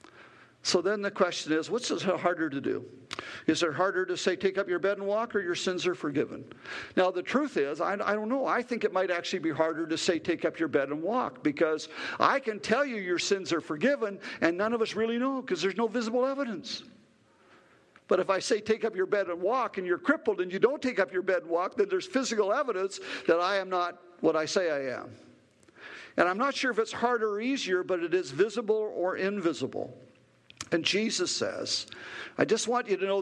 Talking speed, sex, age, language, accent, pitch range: 230 wpm, male, 50-69, English, American, 160-220 Hz